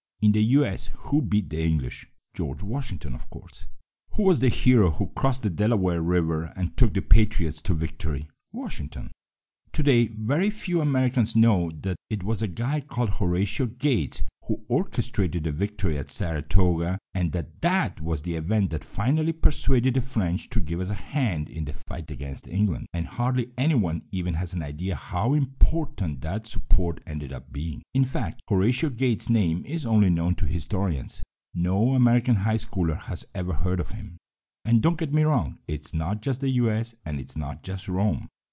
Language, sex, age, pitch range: Chinese, male, 50-69, 85-120 Hz